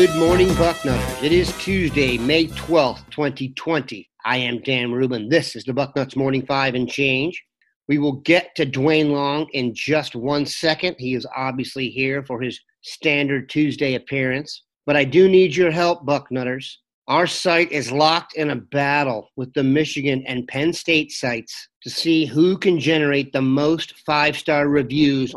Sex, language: male, English